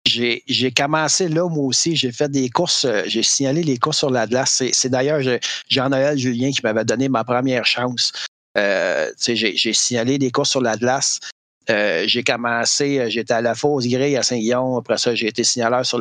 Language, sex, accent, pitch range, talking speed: French, male, Canadian, 115-140 Hz, 200 wpm